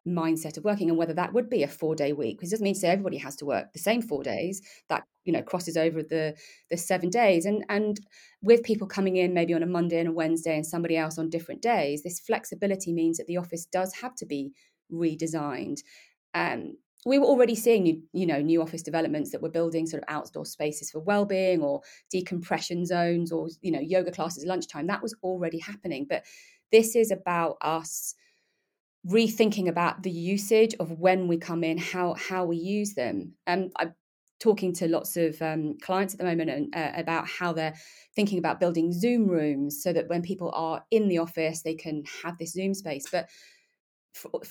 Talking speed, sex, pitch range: 210 wpm, female, 165-205 Hz